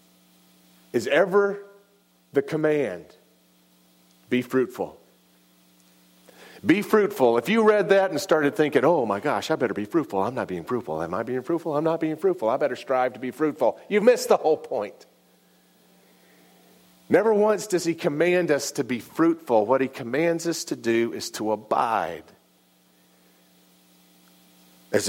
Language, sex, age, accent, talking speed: English, male, 40-59, American, 155 wpm